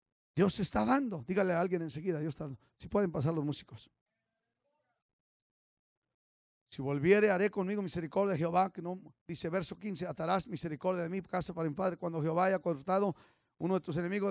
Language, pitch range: English, 180-250 Hz